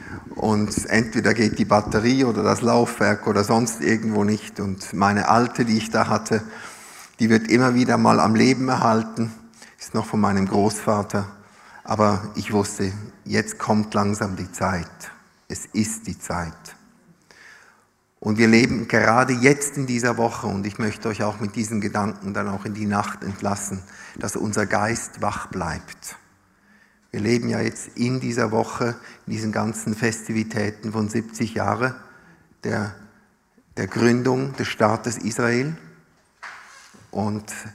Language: German